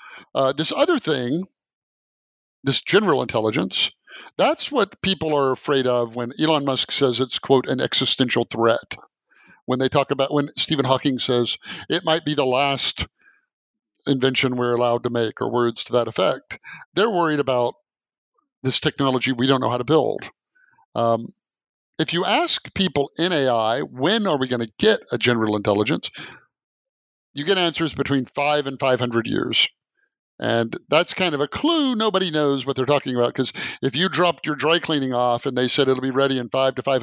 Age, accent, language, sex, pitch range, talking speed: 50-69, American, English, male, 125-150 Hz, 180 wpm